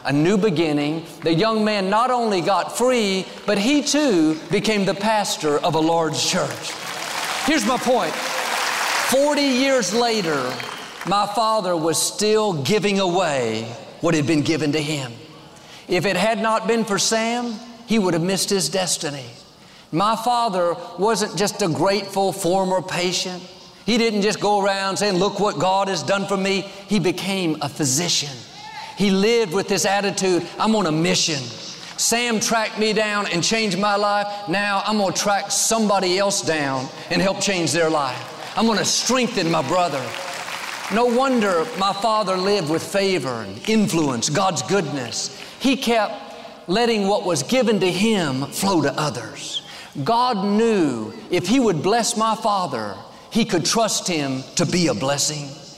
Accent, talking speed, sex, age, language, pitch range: American, 160 wpm, male, 50-69, English, 170-220 Hz